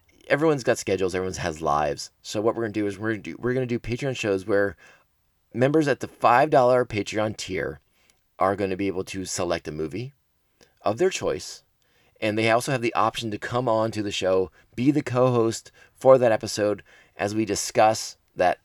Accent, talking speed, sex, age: American, 195 wpm, male, 30-49